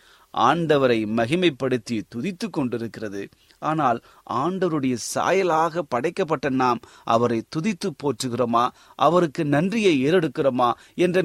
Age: 30-49